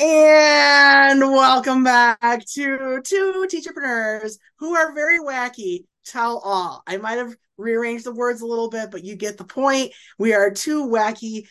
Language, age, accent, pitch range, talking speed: English, 20-39, American, 185-255 Hz, 155 wpm